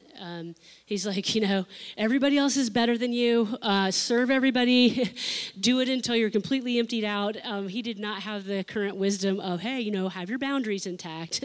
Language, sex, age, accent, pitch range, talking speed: English, female, 30-49, American, 185-240 Hz, 195 wpm